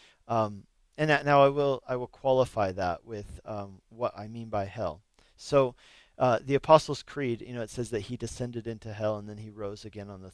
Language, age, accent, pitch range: English, 40-59, American, 105-135 Hz